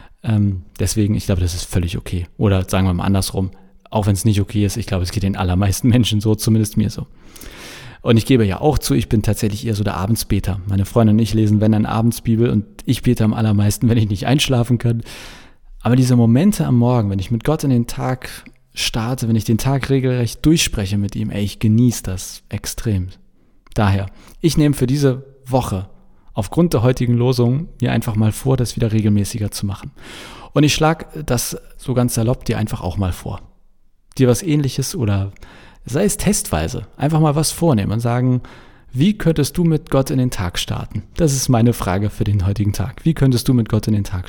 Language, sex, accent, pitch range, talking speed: German, male, German, 105-130 Hz, 210 wpm